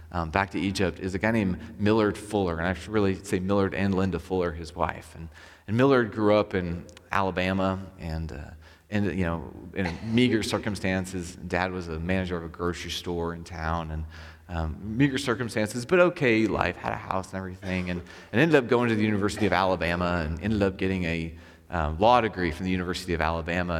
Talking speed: 205 wpm